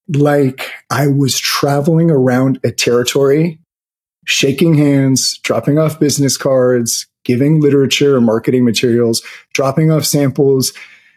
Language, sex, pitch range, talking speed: English, male, 130-160 Hz, 115 wpm